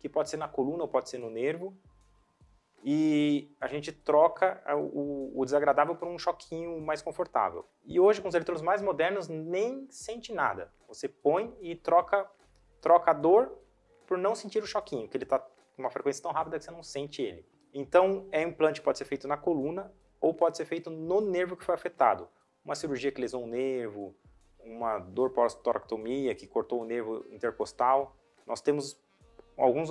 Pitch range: 130-170 Hz